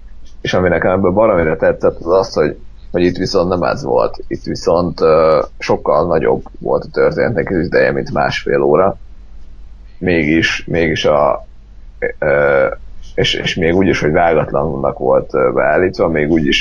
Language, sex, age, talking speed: Hungarian, male, 30-49, 155 wpm